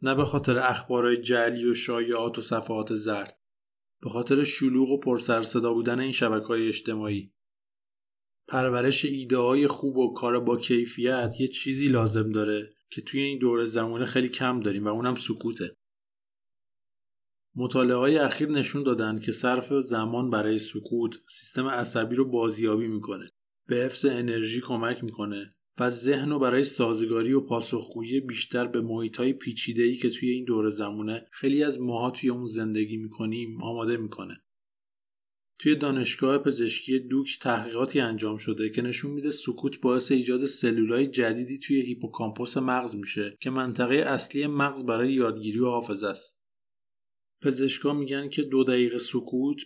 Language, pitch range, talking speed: Persian, 115-130 Hz, 145 wpm